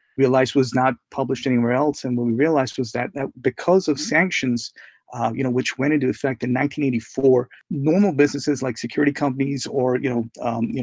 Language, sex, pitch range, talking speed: English, male, 120-145 Hz, 195 wpm